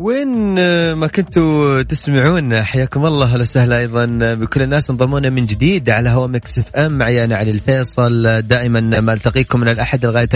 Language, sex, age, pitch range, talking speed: Arabic, male, 30-49, 105-135 Hz, 155 wpm